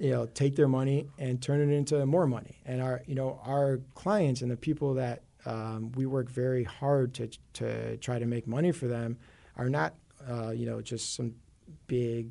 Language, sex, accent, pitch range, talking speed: English, male, American, 115-135 Hz, 205 wpm